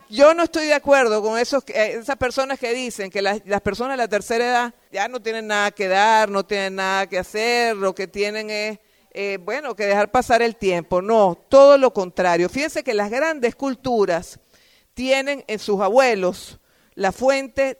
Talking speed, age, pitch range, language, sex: 185 wpm, 50-69, 195-250 Hz, Spanish, female